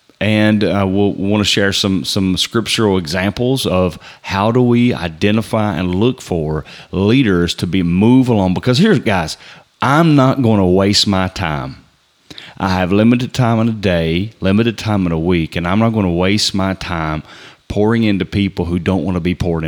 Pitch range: 90-115 Hz